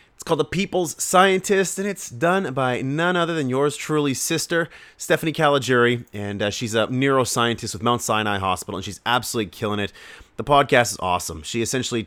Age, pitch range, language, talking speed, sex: 30-49, 105-130 Hz, English, 185 wpm, male